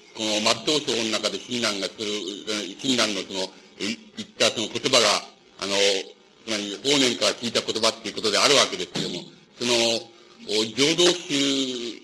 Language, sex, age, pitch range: Japanese, male, 50-69, 110-140 Hz